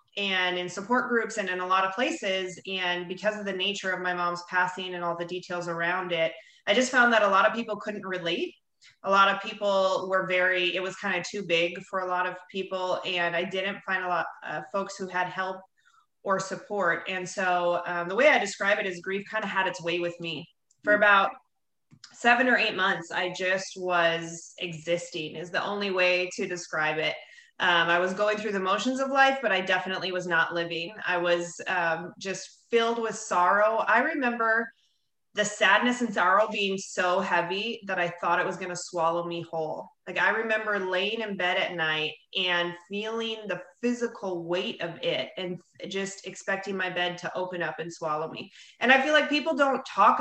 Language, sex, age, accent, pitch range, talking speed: English, female, 20-39, American, 175-210 Hz, 205 wpm